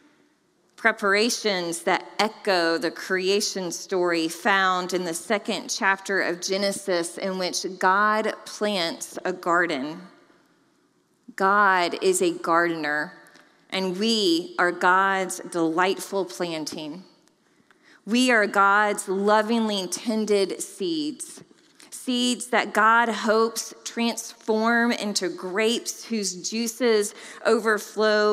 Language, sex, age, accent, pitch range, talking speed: English, female, 30-49, American, 180-220 Hz, 95 wpm